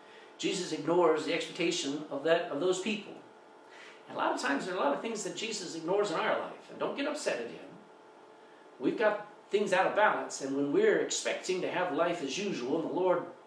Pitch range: 165-210 Hz